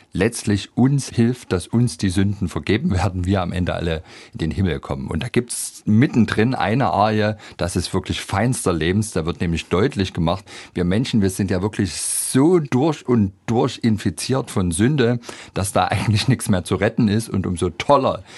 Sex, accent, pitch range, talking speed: male, German, 85-110 Hz, 190 wpm